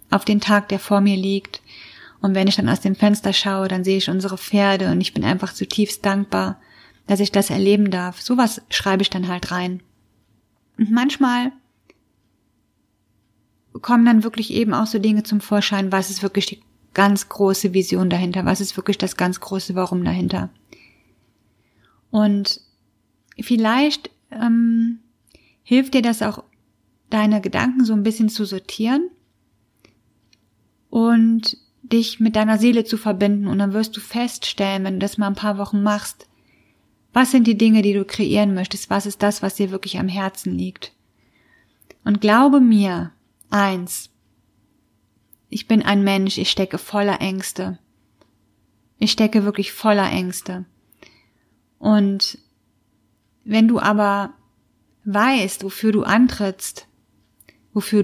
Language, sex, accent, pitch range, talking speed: German, female, German, 185-220 Hz, 145 wpm